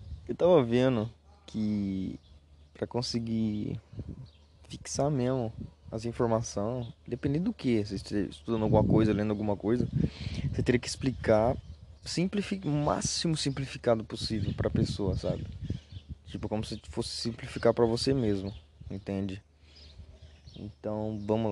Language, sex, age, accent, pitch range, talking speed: Portuguese, male, 20-39, Brazilian, 100-125 Hz, 125 wpm